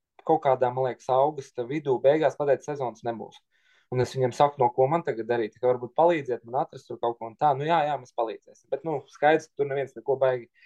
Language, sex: English, male